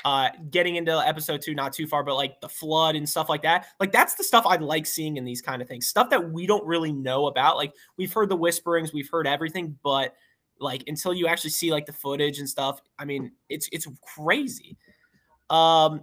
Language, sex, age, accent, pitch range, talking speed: English, male, 20-39, American, 140-170 Hz, 225 wpm